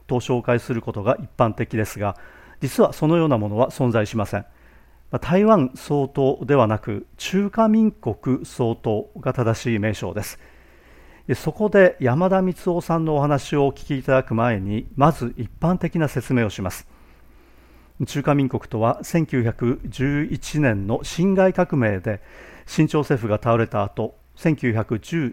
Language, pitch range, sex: Japanese, 110-145 Hz, male